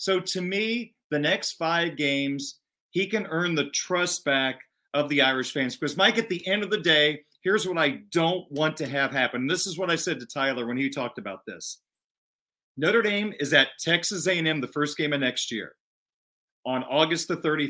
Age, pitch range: 40-59, 145-185 Hz